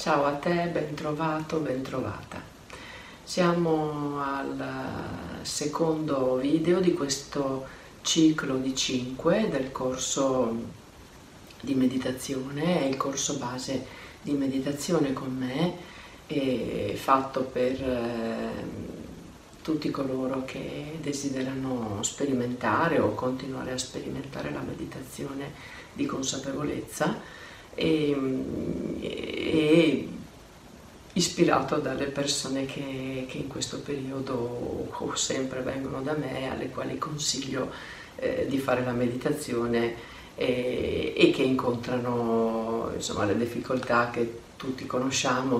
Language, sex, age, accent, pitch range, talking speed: Italian, female, 40-59, native, 120-140 Hz, 100 wpm